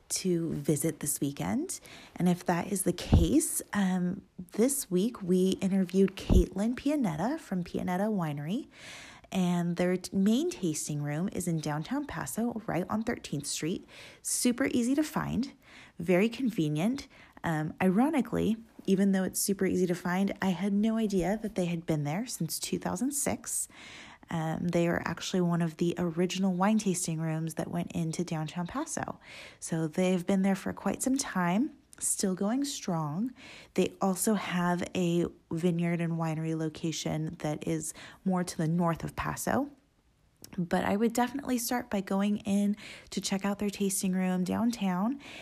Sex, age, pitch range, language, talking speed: female, 20-39, 170-220 Hz, English, 155 wpm